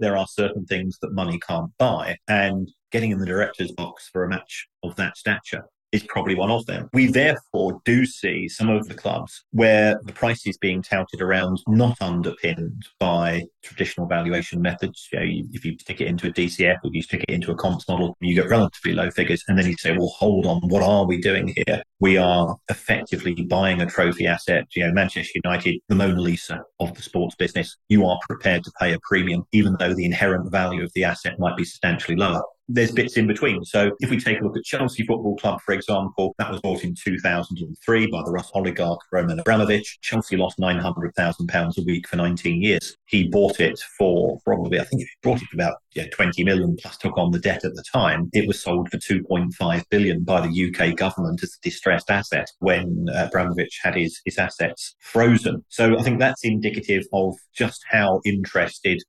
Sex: male